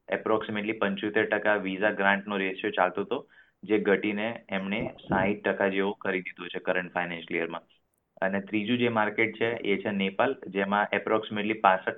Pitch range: 95-100 Hz